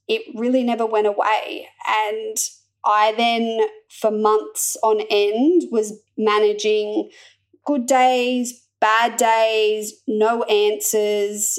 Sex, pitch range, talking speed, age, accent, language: female, 210-250 Hz, 105 wpm, 20-39, Australian, English